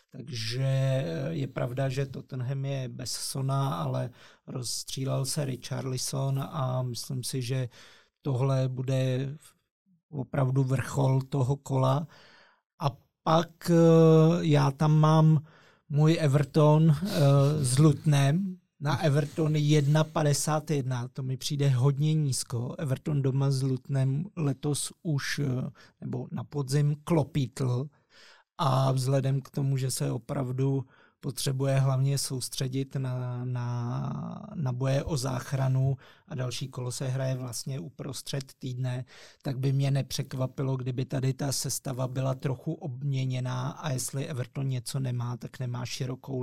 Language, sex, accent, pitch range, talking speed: Czech, male, native, 130-145 Hz, 120 wpm